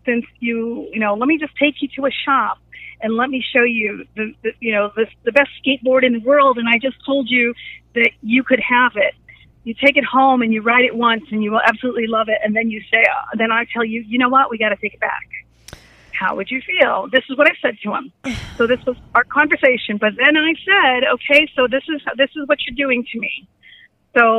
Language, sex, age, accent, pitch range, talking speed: English, female, 40-59, American, 220-270 Hz, 250 wpm